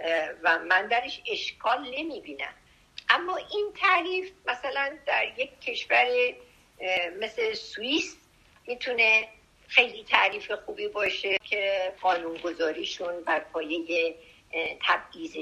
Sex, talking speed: female, 100 wpm